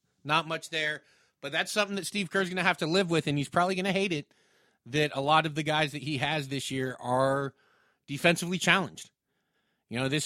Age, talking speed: 30-49, 215 wpm